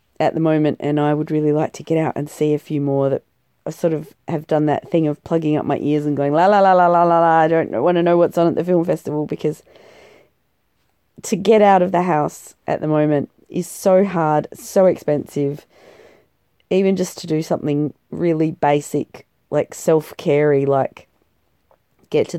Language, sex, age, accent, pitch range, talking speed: English, female, 30-49, Australian, 145-170 Hz, 205 wpm